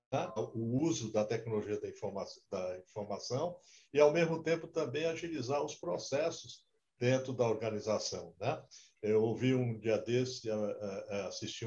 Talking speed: 120 wpm